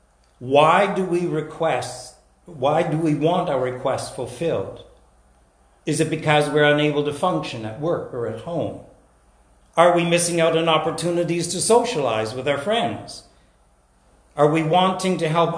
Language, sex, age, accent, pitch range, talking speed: English, male, 60-79, American, 110-170 Hz, 150 wpm